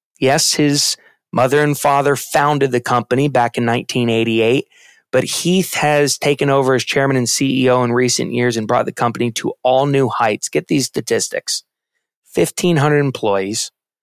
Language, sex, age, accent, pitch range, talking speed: English, male, 30-49, American, 120-150 Hz, 155 wpm